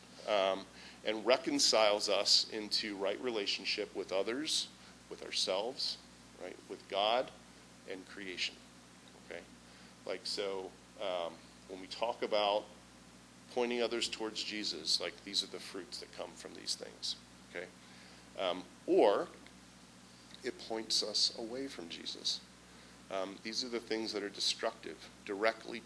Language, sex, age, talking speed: English, male, 40-59, 130 wpm